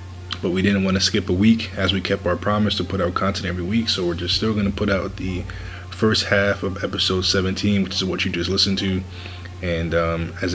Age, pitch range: 20-39, 90-100 Hz